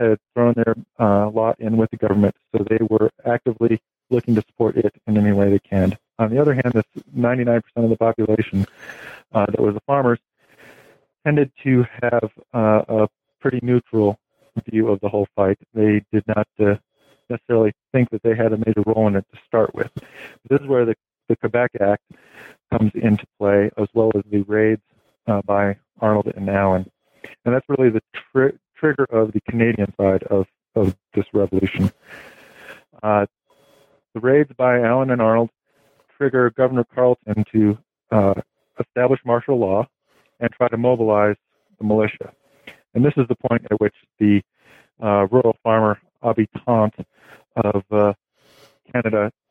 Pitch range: 105-125 Hz